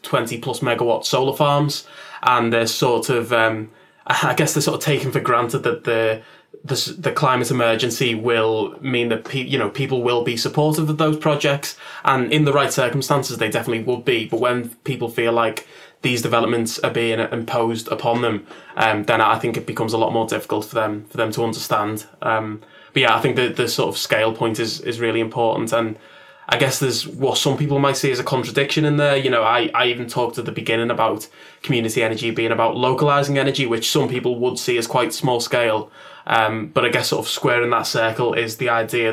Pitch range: 115-135 Hz